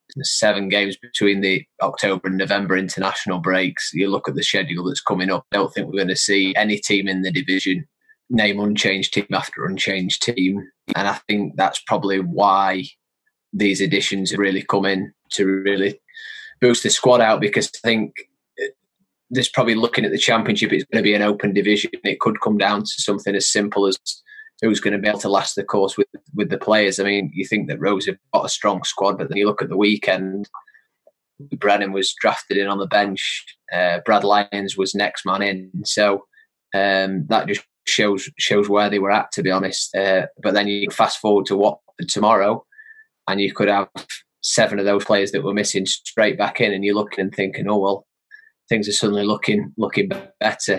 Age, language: 20-39, English